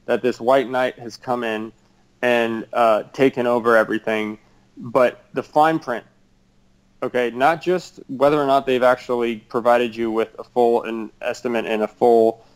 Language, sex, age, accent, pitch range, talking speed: English, male, 30-49, American, 115-135 Hz, 160 wpm